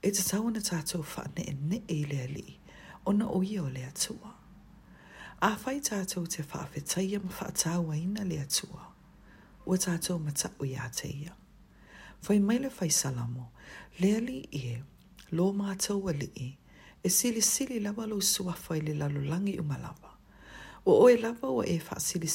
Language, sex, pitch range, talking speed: English, female, 150-205 Hz, 165 wpm